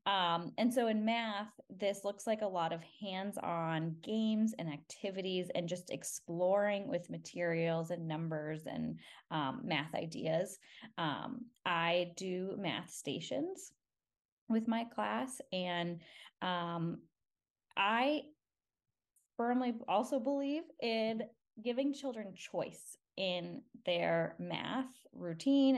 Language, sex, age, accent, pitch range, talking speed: English, female, 20-39, American, 175-225 Hz, 110 wpm